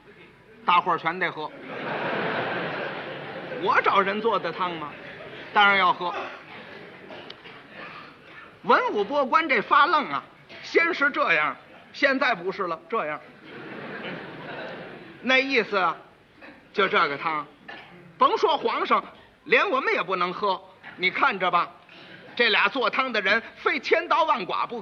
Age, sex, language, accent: 50-69, male, Chinese, native